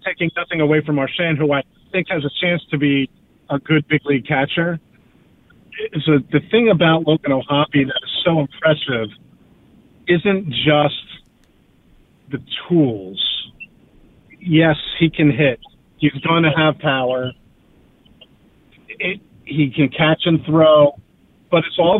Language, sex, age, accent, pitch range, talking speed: English, male, 40-59, American, 140-165 Hz, 130 wpm